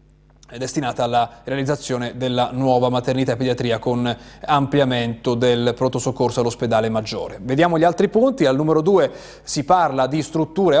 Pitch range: 115-155 Hz